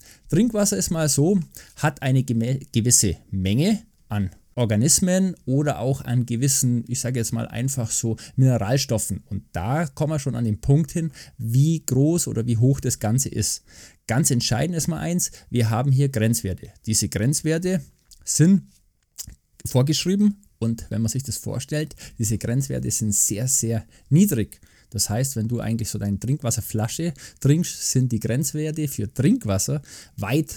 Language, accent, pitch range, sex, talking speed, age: German, German, 110-145 Hz, male, 155 wpm, 20-39